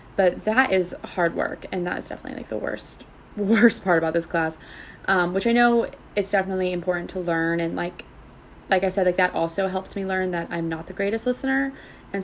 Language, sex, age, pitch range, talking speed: English, female, 20-39, 175-200 Hz, 215 wpm